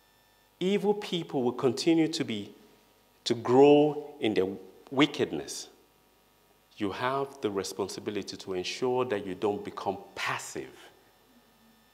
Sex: male